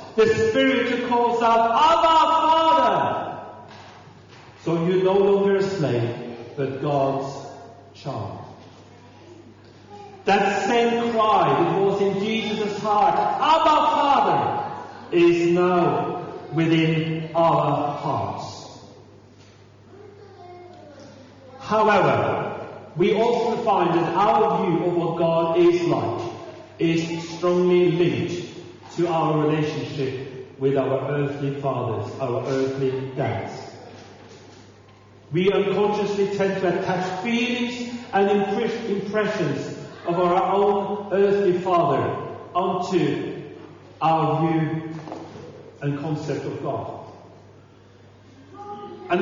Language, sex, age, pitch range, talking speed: English, male, 40-59, 145-210 Hz, 95 wpm